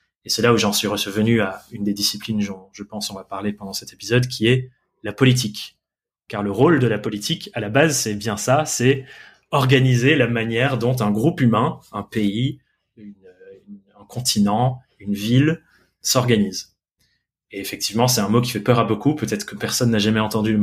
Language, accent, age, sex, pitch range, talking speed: French, French, 20-39, male, 105-130 Hz, 205 wpm